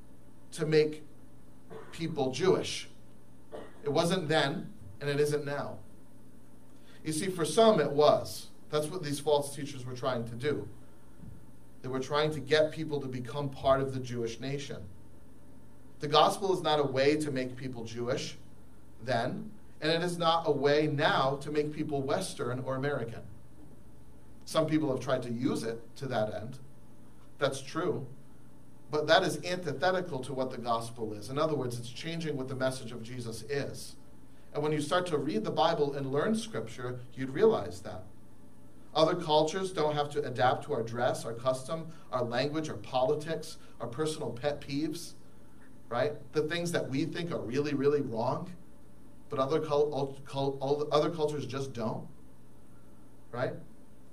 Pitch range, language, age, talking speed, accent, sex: 125-155 Hz, English, 40-59, 160 wpm, American, male